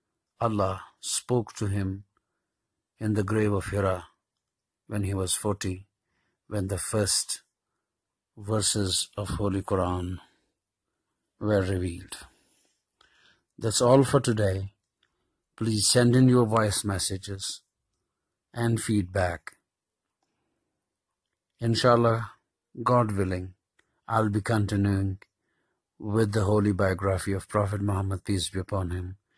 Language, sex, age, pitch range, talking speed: English, male, 50-69, 95-115 Hz, 105 wpm